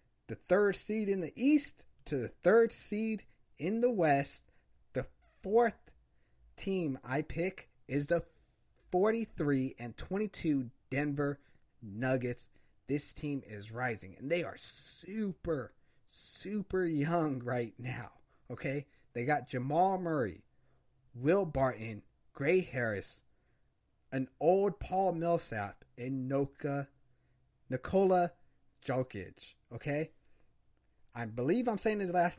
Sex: male